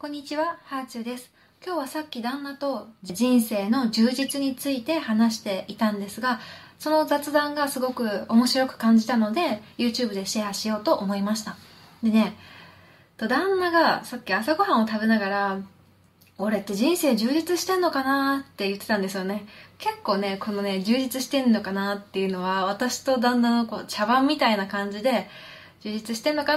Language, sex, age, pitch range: Japanese, female, 20-39, 210-285 Hz